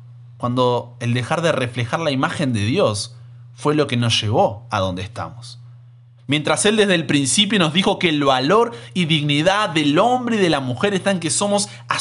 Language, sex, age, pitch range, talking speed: Spanish, male, 30-49, 120-150 Hz, 195 wpm